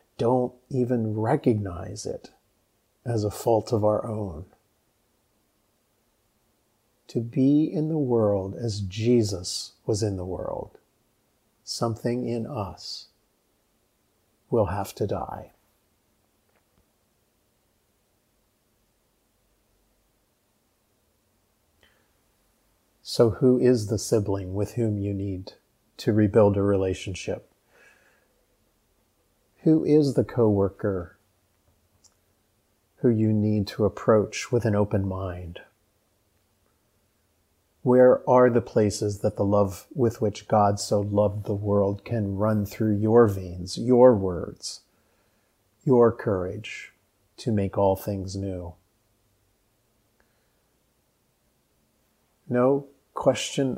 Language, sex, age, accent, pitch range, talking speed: English, male, 50-69, American, 100-120 Hz, 95 wpm